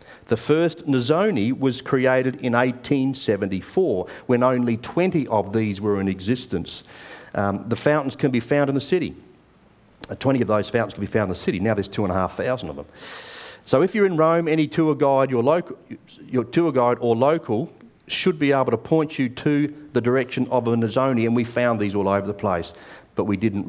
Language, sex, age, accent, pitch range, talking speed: English, male, 50-69, Australian, 105-140 Hz, 205 wpm